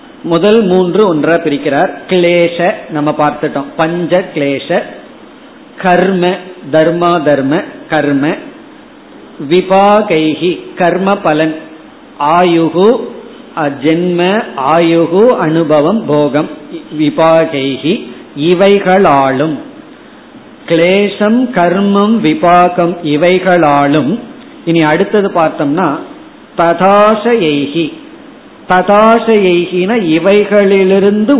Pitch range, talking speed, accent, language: 160-205 Hz, 65 wpm, native, Tamil